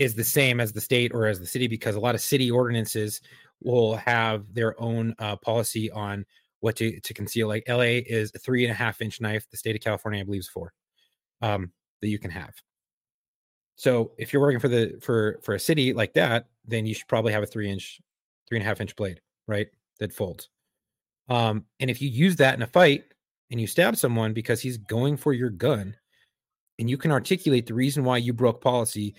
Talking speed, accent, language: 220 wpm, American, English